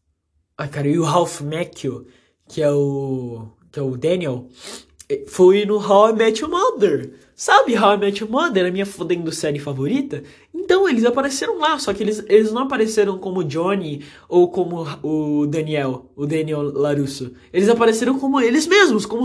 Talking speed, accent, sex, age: 180 wpm, Brazilian, male, 20-39